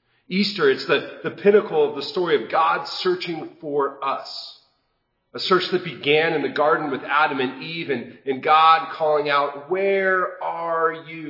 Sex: male